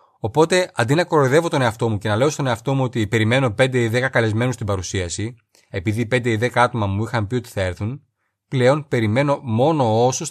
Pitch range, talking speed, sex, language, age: 105-140 Hz, 210 wpm, male, Greek, 30-49